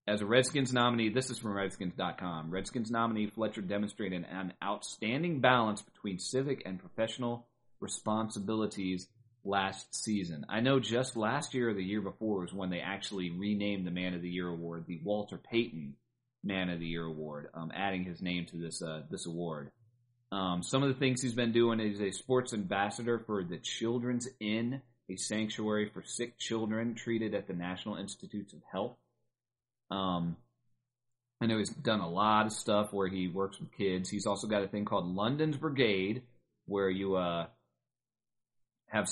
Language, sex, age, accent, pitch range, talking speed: English, male, 30-49, American, 90-115 Hz, 175 wpm